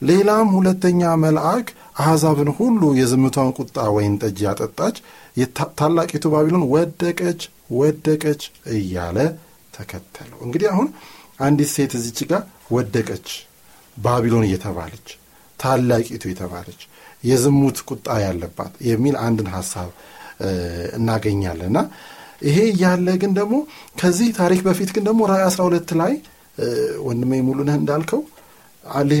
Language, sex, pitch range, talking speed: Amharic, male, 110-160 Hz, 85 wpm